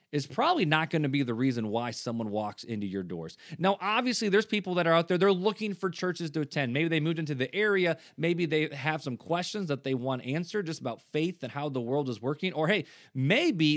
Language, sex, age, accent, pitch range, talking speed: English, male, 30-49, American, 130-185 Hz, 240 wpm